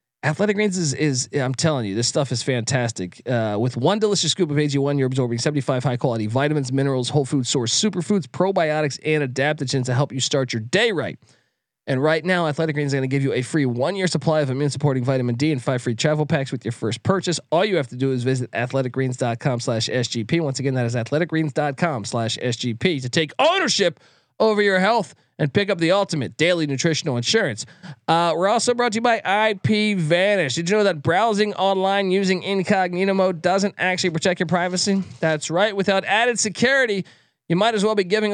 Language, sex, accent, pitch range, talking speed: English, male, American, 135-185 Hz, 195 wpm